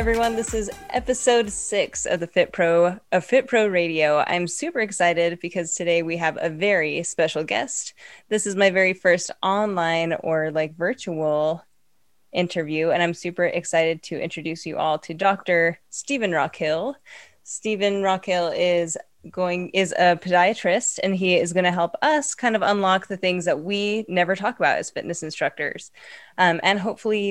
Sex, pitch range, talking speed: female, 170-205 Hz, 165 wpm